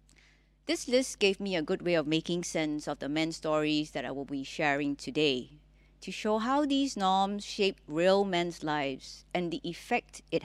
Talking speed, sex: 190 wpm, female